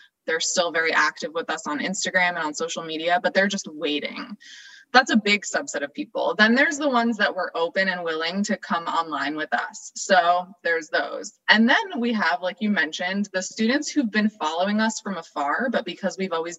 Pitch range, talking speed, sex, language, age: 175-235 Hz, 210 wpm, female, English, 20-39